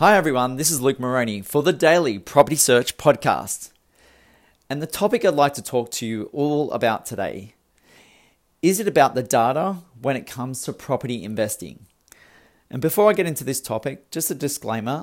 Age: 40-59